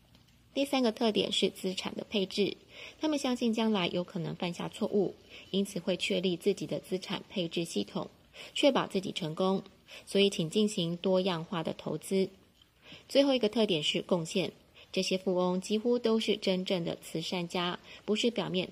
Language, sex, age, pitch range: Chinese, female, 20-39, 180-210 Hz